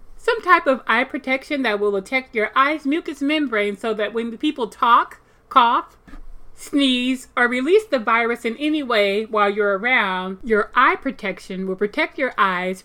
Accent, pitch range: American, 205-270 Hz